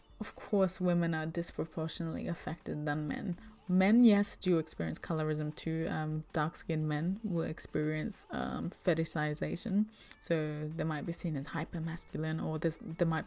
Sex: female